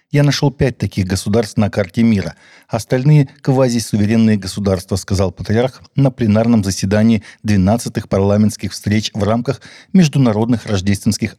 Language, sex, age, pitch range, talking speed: Russian, male, 50-69, 100-120 Hz, 130 wpm